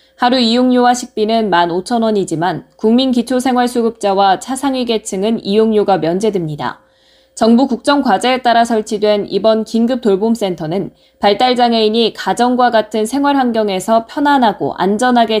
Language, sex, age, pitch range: Korean, female, 20-39, 195-245 Hz